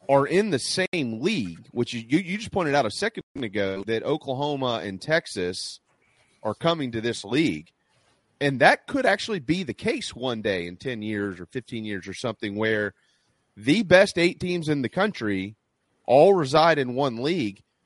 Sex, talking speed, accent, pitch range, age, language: male, 180 wpm, American, 115-160 Hz, 30-49, English